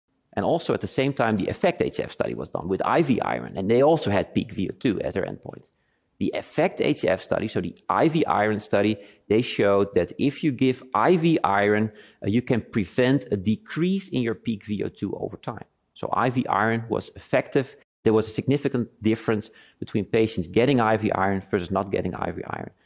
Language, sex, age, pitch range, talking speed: English, male, 40-59, 105-125 Hz, 190 wpm